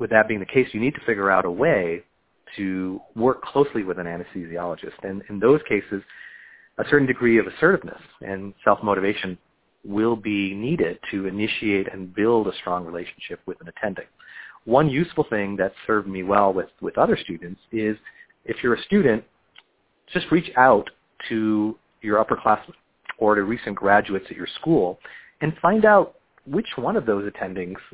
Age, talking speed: 40-59, 170 wpm